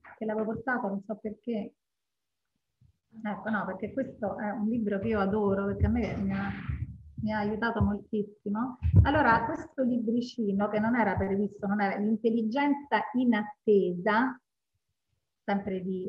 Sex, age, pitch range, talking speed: female, 40-59, 205-245 Hz, 145 wpm